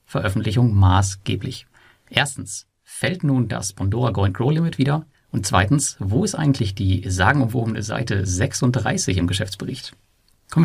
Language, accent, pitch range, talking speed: German, German, 100-130 Hz, 130 wpm